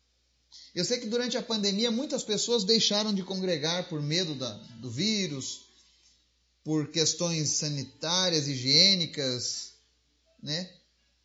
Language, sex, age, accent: Portuguese, male, 30-49, Brazilian